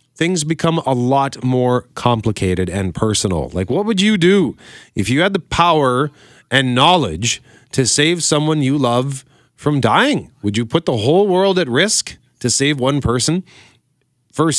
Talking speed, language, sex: 165 wpm, English, male